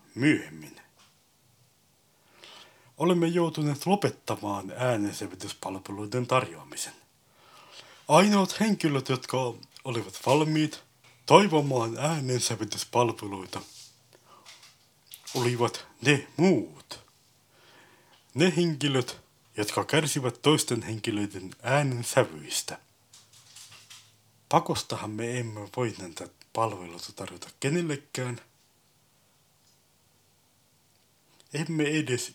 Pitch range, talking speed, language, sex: 110-145 Hz, 60 wpm, Finnish, male